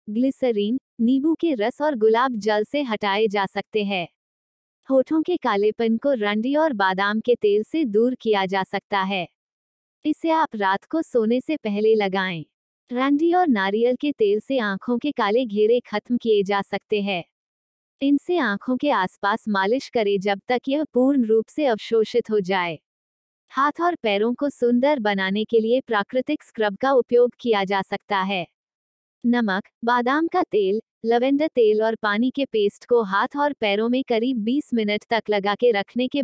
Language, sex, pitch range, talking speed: Hindi, female, 205-265 Hz, 175 wpm